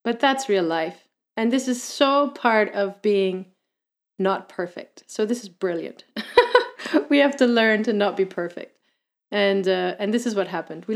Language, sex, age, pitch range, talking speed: English, female, 30-49, 190-235 Hz, 180 wpm